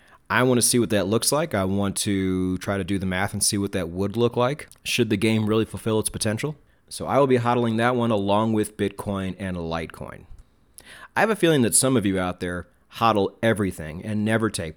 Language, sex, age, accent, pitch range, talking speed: English, male, 30-49, American, 95-115 Hz, 230 wpm